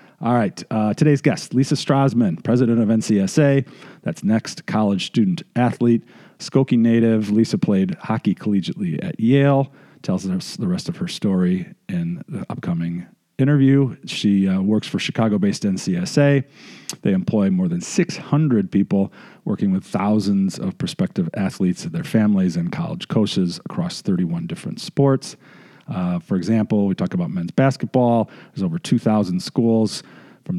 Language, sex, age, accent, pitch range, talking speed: English, male, 40-59, American, 115-185 Hz, 145 wpm